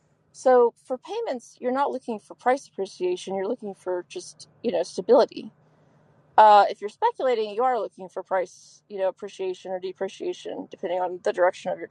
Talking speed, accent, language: 180 wpm, American, English